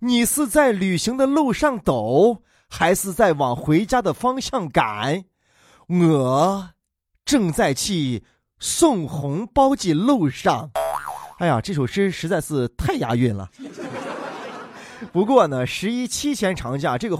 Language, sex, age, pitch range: Chinese, male, 20-39, 135-220 Hz